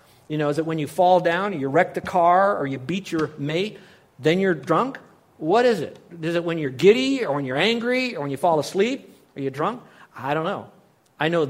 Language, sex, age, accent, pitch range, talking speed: English, male, 50-69, American, 140-195 Hz, 240 wpm